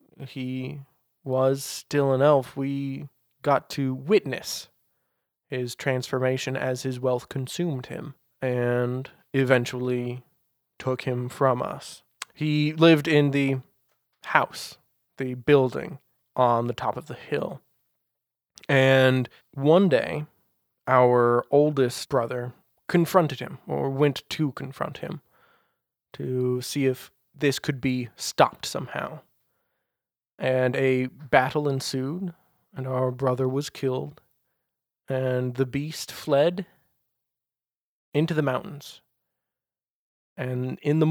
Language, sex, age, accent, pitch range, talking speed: English, male, 20-39, American, 125-145 Hz, 110 wpm